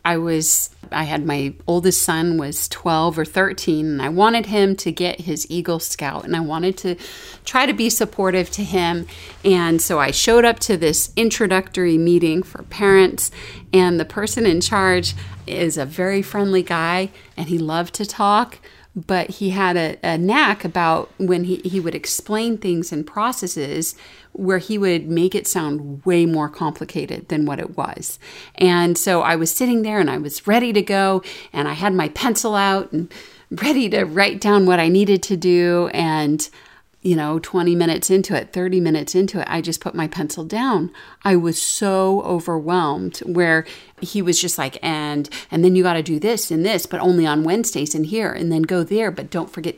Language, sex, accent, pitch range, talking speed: English, female, American, 165-200 Hz, 195 wpm